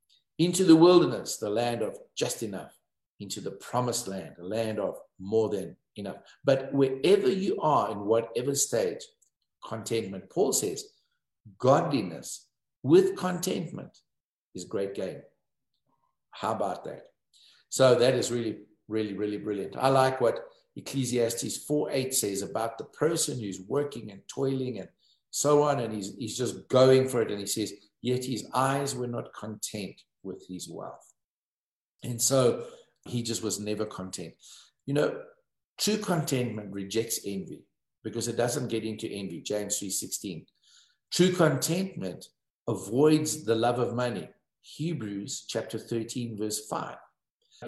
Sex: male